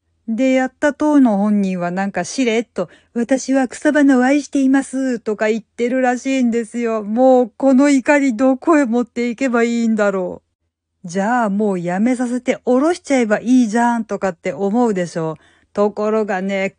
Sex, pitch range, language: female, 195-260 Hz, Japanese